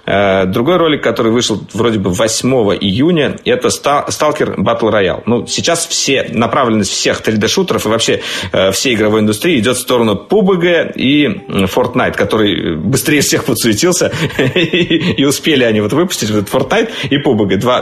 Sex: male